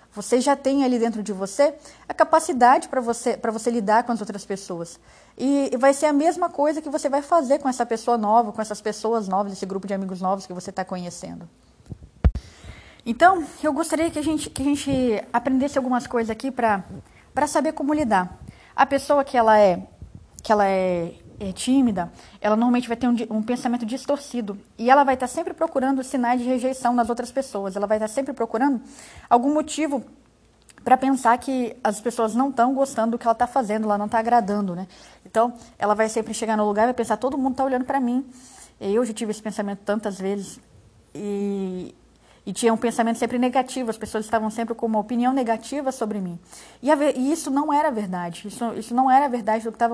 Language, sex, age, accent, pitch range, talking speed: Portuguese, female, 20-39, Brazilian, 205-265 Hz, 200 wpm